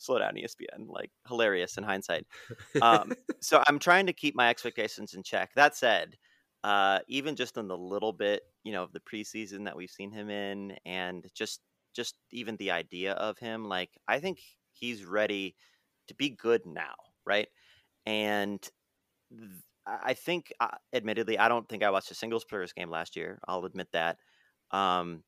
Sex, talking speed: male, 180 wpm